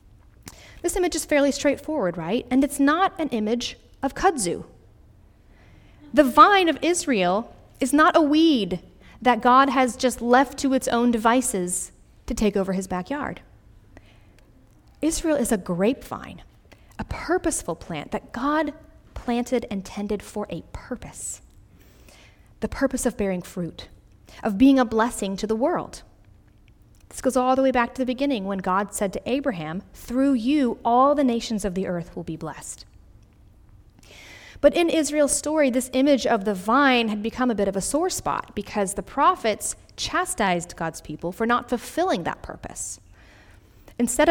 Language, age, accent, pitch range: English, 30-49, American, 175-275 Hz